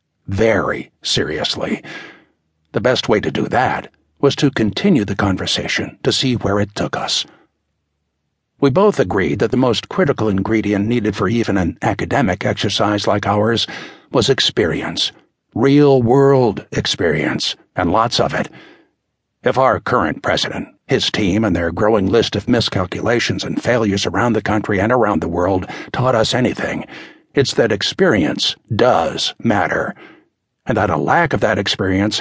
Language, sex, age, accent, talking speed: English, male, 60-79, American, 150 wpm